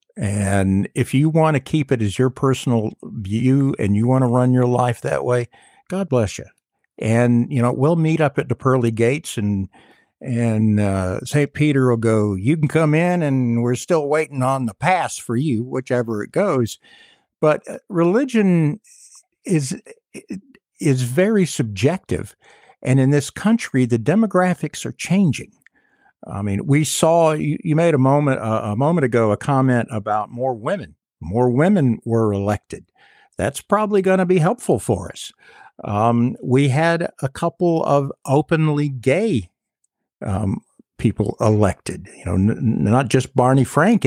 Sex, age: male, 50-69